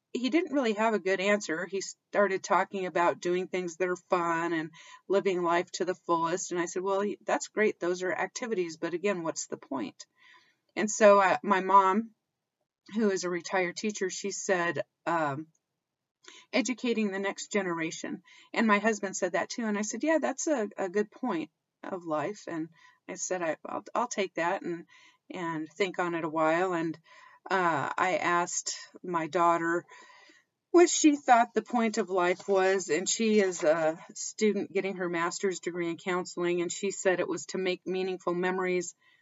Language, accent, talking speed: English, American, 180 wpm